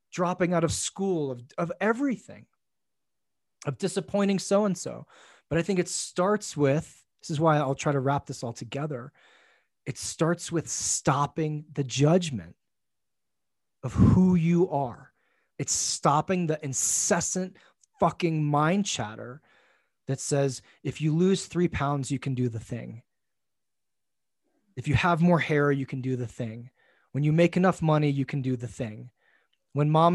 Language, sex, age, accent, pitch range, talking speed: English, male, 30-49, American, 130-170 Hz, 155 wpm